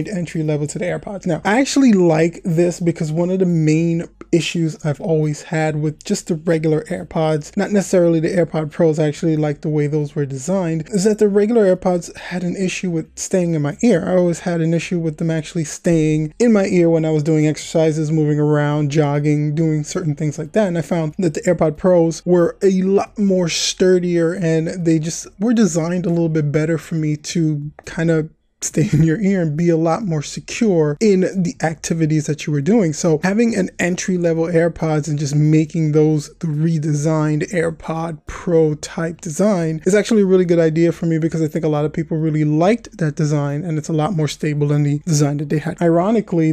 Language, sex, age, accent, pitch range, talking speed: English, male, 20-39, American, 155-180 Hz, 215 wpm